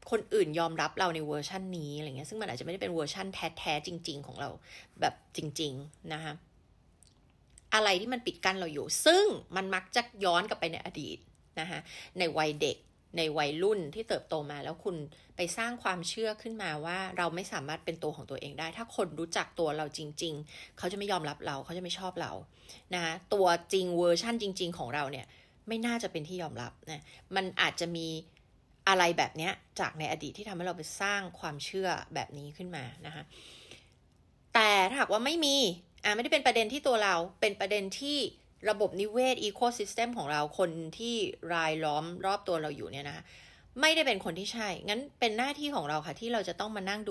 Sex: female